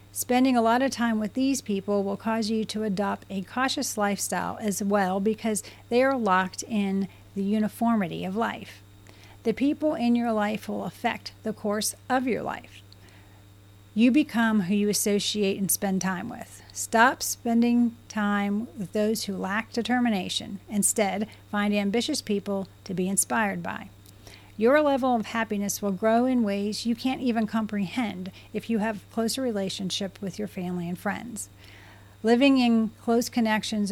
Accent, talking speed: American, 160 wpm